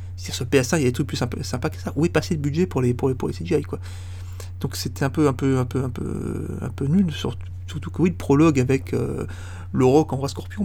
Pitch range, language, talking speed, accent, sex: 90-150 Hz, French, 265 wpm, French, male